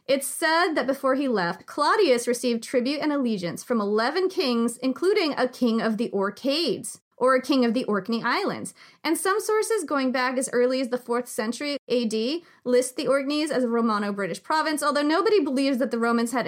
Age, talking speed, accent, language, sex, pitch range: 30-49, 195 wpm, American, English, female, 225-300 Hz